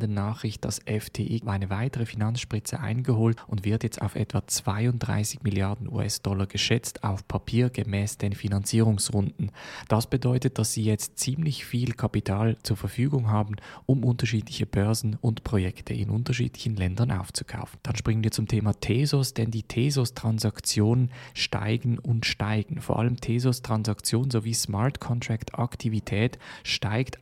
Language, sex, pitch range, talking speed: German, male, 105-125 Hz, 135 wpm